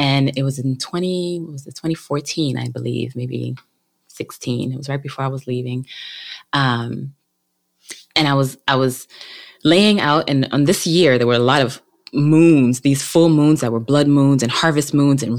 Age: 20-39